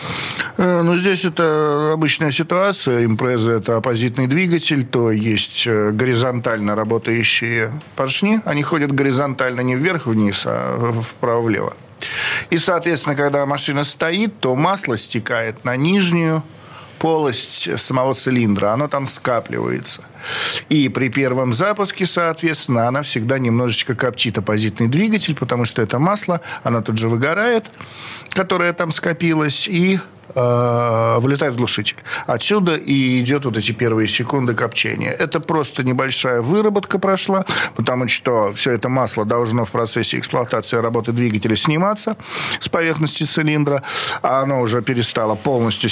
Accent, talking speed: native, 125 wpm